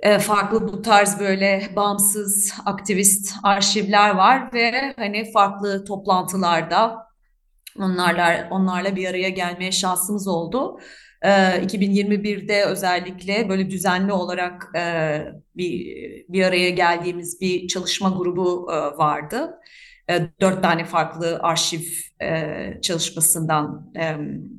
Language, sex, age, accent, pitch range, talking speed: Turkish, female, 30-49, native, 175-200 Hz, 105 wpm